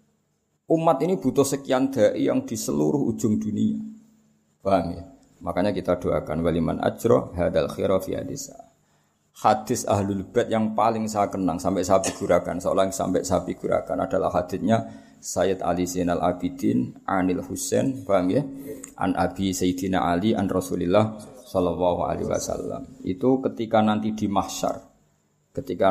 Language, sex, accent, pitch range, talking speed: Indonesian, male, native, 90-130 Hz, 125 wpm